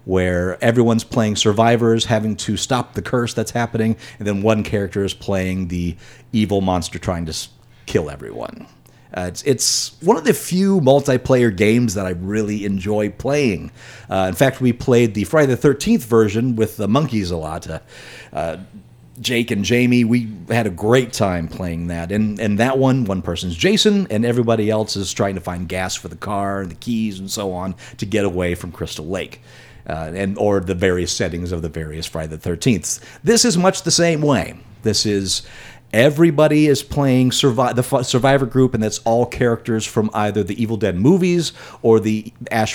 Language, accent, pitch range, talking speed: English, American, 95-125 Hz, 190 wpm